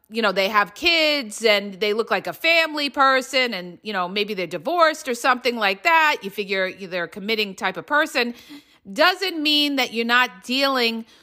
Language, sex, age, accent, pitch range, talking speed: English, female, 40-59, American, 225-315 Hz, 190 wpm